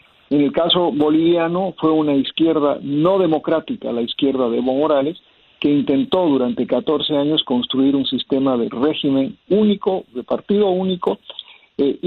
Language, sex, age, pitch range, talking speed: Spanish, male, 50-69, 135-160 Hz, 145 wpm